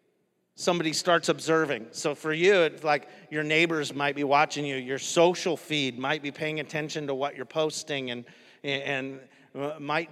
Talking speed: 165 wpm